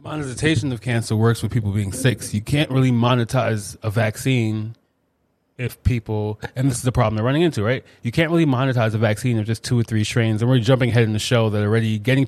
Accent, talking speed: American, 230 wpm